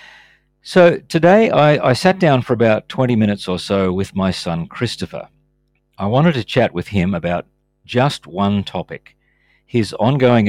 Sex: male